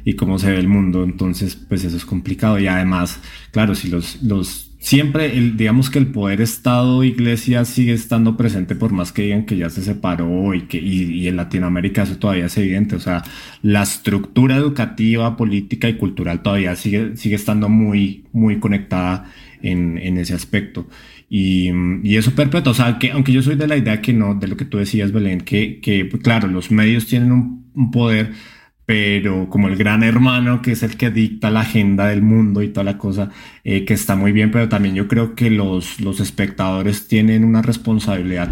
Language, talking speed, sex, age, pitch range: Spanish, 200 wpm, male, 20-39, 95-115 Hz